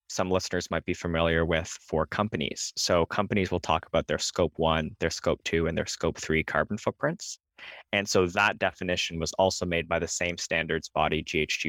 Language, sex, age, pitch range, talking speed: English, male, 20-39, 80-95 Hz, 195 wpm